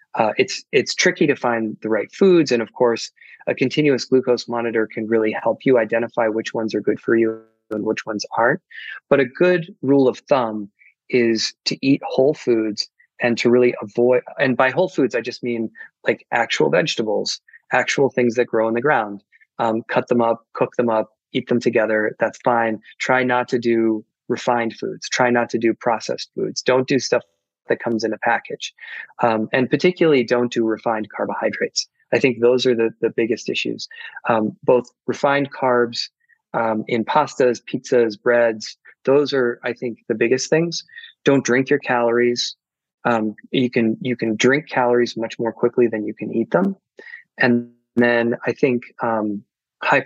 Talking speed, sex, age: 180 wpm, male, 20-39